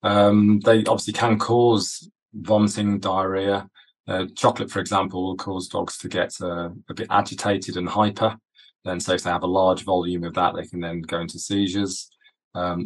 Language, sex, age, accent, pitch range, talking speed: English, male, 20-39, British, 85-100 Hz, 175 wpm